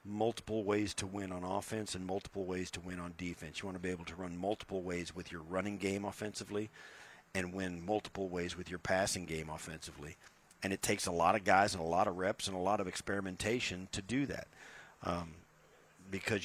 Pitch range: 90-105 Hz